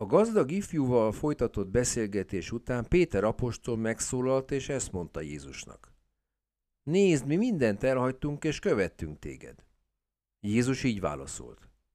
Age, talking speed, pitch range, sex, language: 50-69, 115 wpm, 95-130 Hz, male, Hungarian